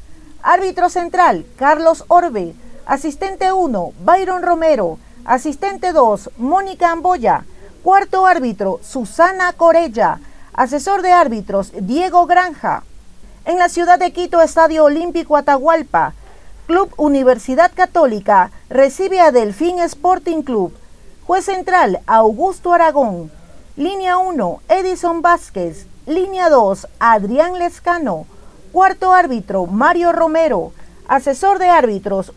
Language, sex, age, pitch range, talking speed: Spanish, female, 40-59, 265-355 Hz, 105 wpm